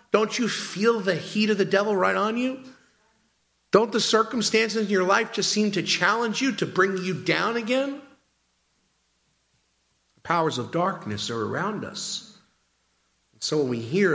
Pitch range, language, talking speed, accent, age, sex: 115-185 Hz, English, 160 wpm, American, 50-69, male